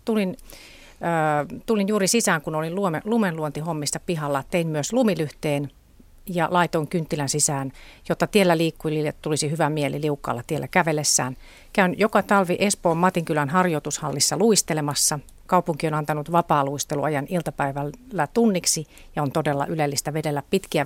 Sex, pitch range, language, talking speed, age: female, 145-180 Hz, Finnish, 125 wpm, 40-59